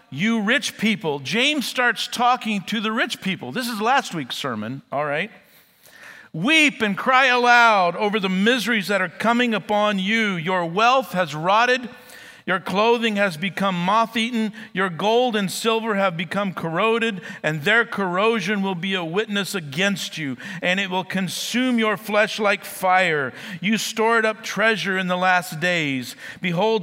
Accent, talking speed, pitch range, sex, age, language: American, 160 wpm, 180-225 Hz, male, 50-69, English